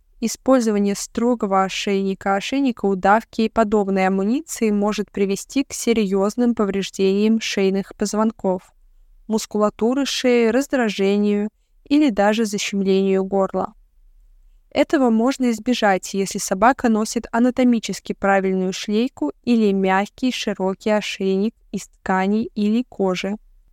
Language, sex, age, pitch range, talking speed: Russian, female, 20-39, 195-235 Hz, 100 wpm